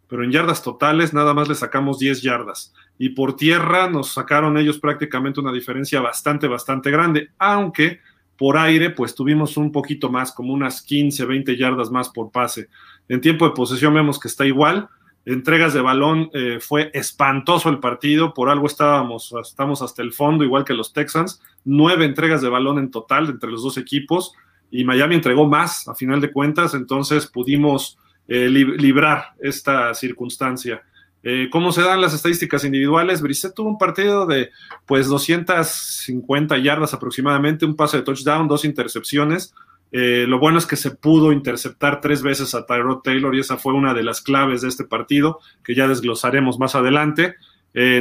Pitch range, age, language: 130-155 Hz, 40-59, Spanish